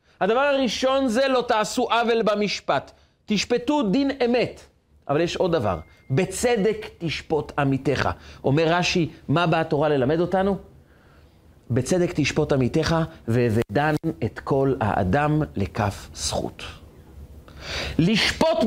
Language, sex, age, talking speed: Hebrew, male, 40-59, 110 wpm